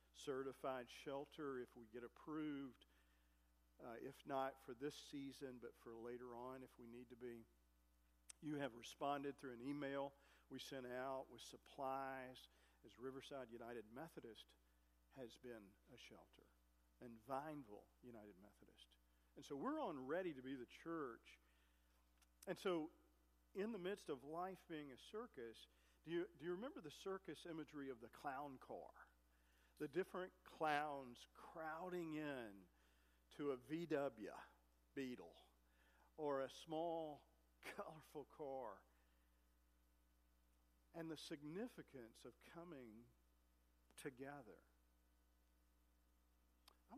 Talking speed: 125 wpm